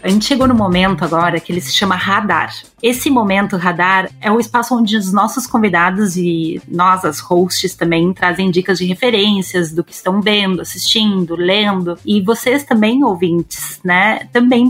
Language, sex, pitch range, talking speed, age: Portuguese, female, 180-230 Hz, 170 wpm, 30-49